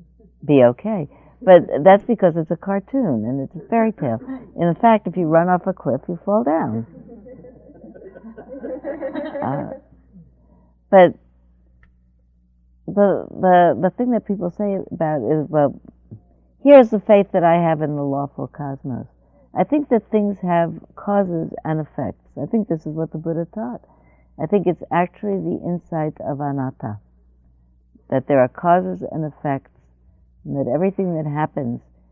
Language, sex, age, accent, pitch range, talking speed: English, female, 60-79, American, 115-175 Hz, 150 wpm